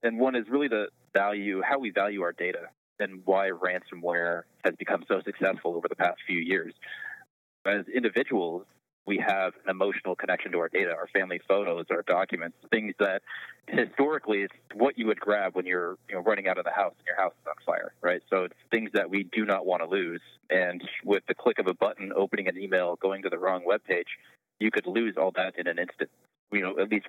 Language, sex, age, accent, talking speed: English, male, 30-49, American, 220 wpm